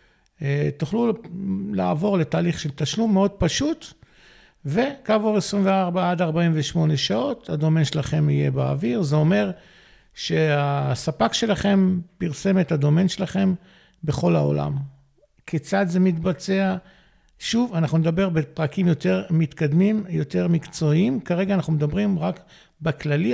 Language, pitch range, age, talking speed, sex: Hebrew, 145-185 Hz, 50-69, 110 wpm, male